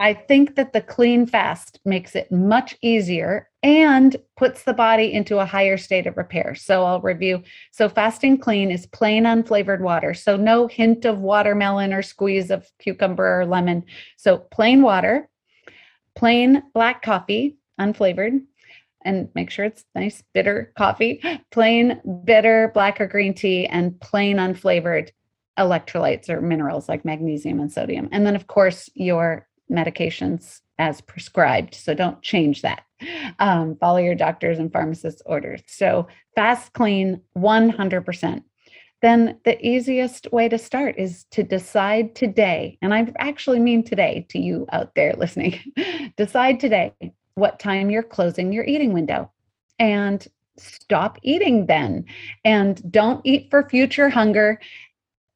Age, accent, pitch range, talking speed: 30-49, American, 185-235 Hz, 145 wpm